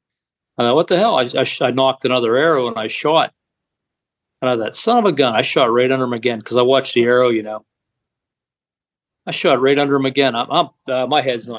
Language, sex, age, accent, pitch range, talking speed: English, male, 40-59, American, 120-140 Hz, 240 wpm